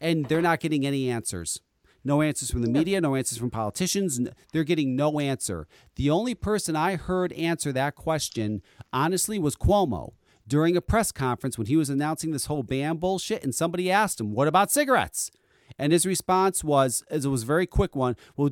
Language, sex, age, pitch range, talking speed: English, male, 40-59, 120-180 Hz, 200 wpm